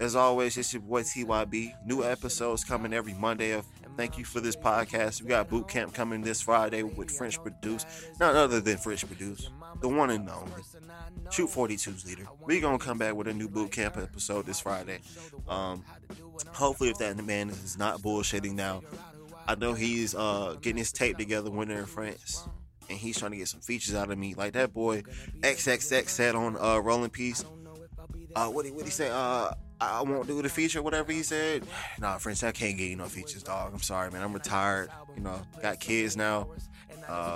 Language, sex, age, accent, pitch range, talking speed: English, male, 20-39, American, 100-120 Hz, 205 wpm